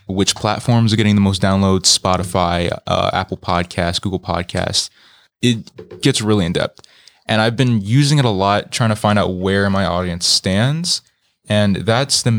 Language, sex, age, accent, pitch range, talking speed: English, male, 20-39, American, 95-115 Hz, 170 wpm